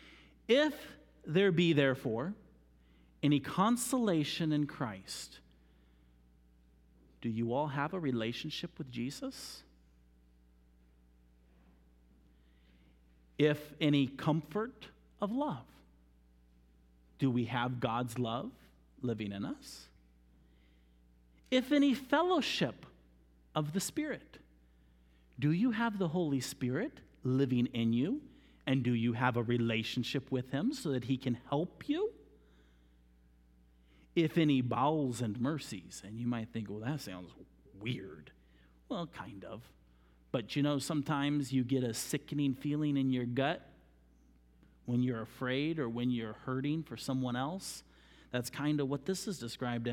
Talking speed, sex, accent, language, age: 125 wpm, male, American, English, 50-69